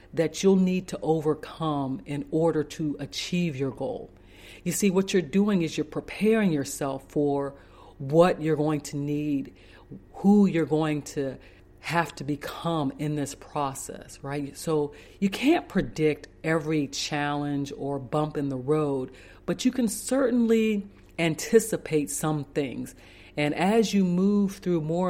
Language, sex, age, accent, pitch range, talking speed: English, female, 40-59, American, 140-170 Hz, 145 wpm